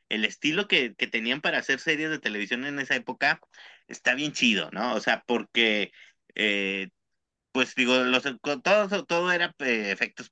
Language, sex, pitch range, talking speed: Spanish, male, 115-165 Hz, 165 wpm